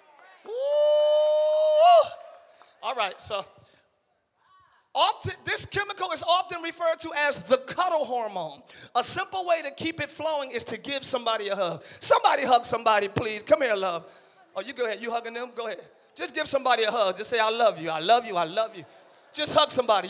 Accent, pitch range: American, 240-335 Hz